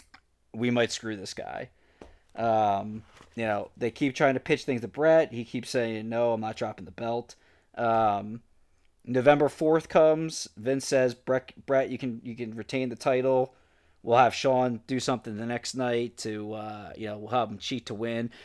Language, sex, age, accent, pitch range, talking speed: English, male, 20-39, American, 110-135 Hz, 190 wpm